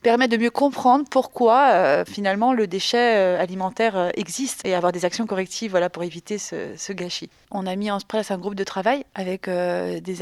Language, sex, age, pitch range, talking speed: French, female, 20-39, 190-225 Hz, 200 wpm